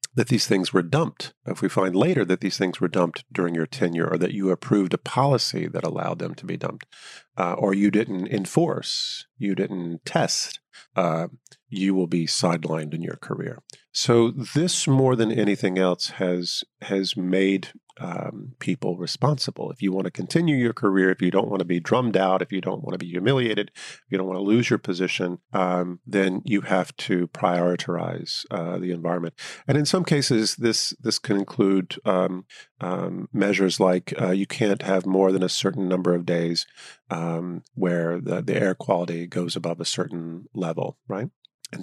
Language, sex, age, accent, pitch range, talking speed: English, male, 40-59, American, 90-105 Hz, 190 wpm